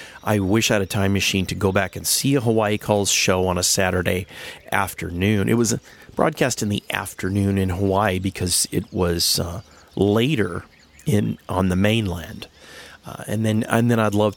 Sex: male